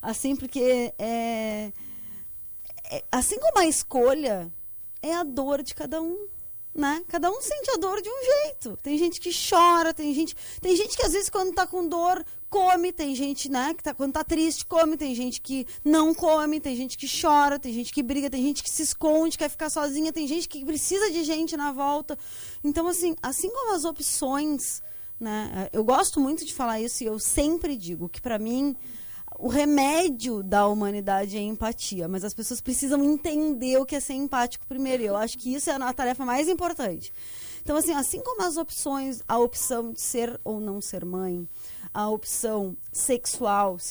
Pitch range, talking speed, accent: 230-320 Hz, 195 wpm, Brazilian